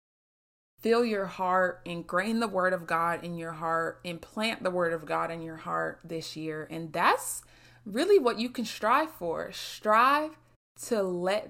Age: 20-39